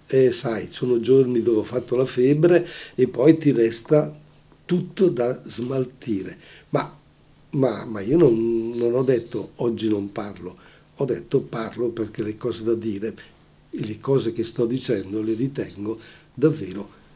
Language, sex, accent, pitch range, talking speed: Italian, male, native, 120-150 Hz, 145 wpm